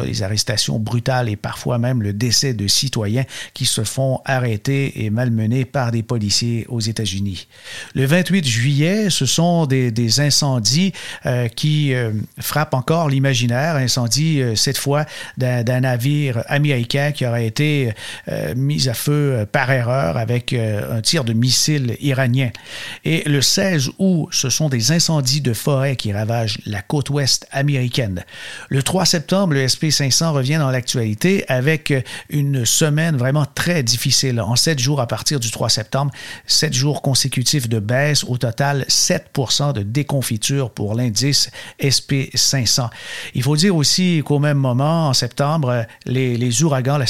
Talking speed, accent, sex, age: 160 wpm, Canadian, male, 50-69